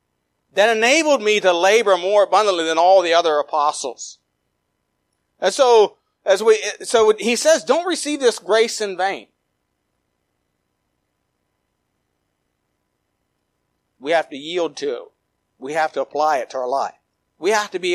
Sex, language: male, English